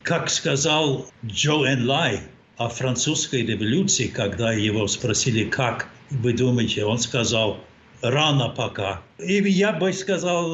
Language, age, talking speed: Russian, 60-79, 125 wpm